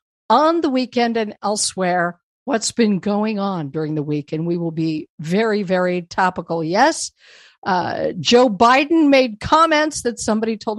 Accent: American